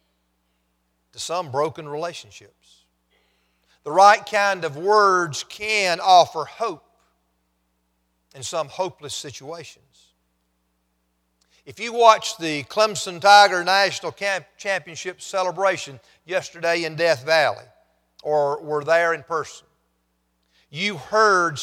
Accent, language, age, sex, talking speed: American, English, 50-69, male, 100 wpm